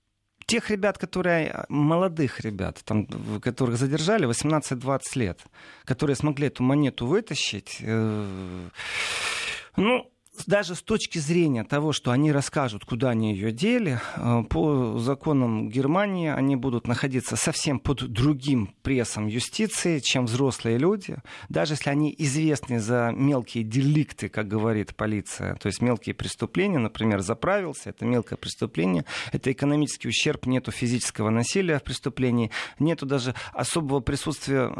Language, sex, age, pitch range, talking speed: Russian, male, 40-59, 115-155 Hz, 125 wpm